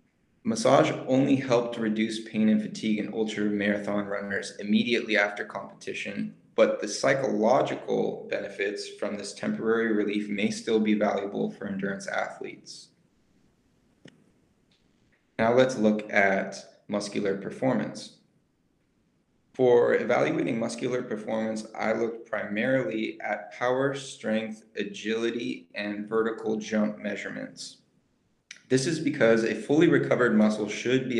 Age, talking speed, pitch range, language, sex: 20-39, 110 wpm, 100-115 Hz, English, male